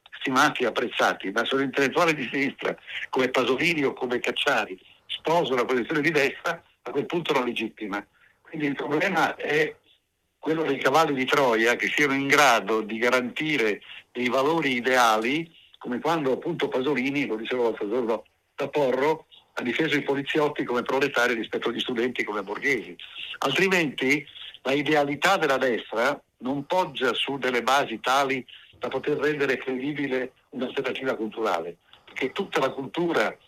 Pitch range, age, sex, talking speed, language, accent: 125-150 Hz, 60-79, male, 150 wpm, Italian, native